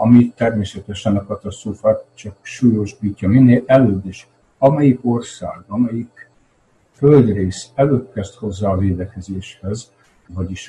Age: 60-79